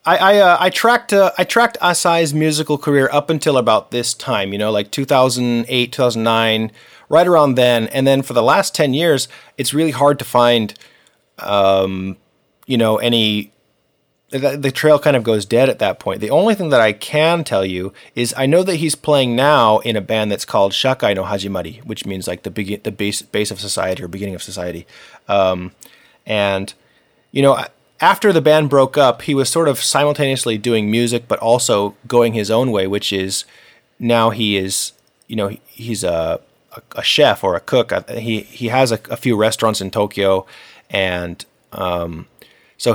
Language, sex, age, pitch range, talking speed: English, male, 30-49, 100-135 Hz, 195 wpm